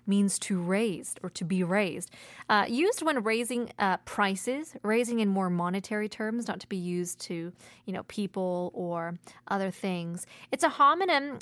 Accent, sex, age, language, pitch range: American, female, 20-39, Korean, 185-220 Hz